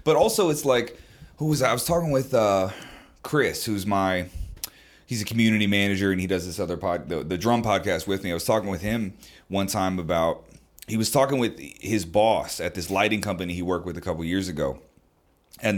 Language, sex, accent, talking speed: English, male, American, 215 wpm